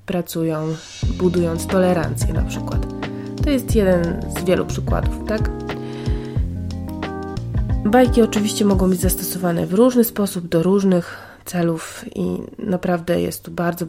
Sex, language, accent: female, Polish, native